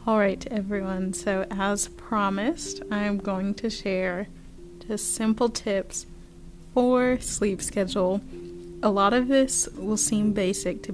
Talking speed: 125 wpm